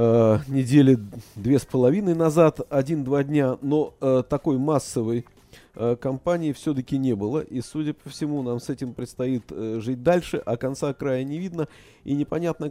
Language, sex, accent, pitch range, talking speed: Russian, male, native, 105-140 Hz, 160 wpm